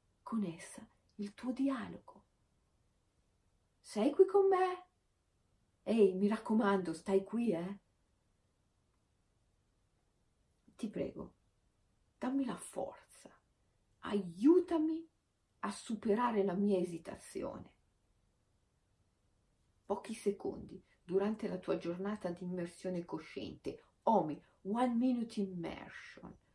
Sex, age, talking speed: female, 50-69, 85 wpm